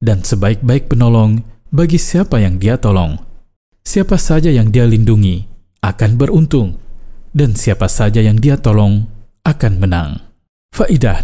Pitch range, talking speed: 105-135 Hz, 130 wpm